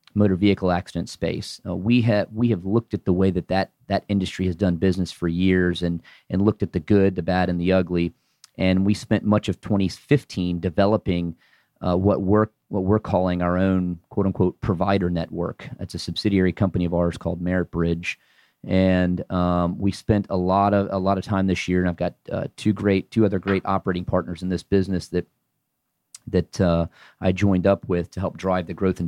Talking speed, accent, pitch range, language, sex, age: 205 wpm, American, 90-100 Hz, English, male, 30-49